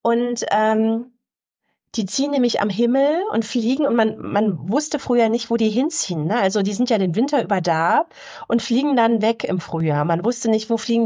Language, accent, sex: German, German, female